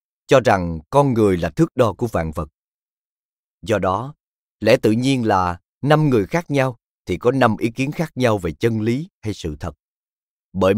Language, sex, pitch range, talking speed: Vietnamese, male, 90-135 Hz, 190 wpm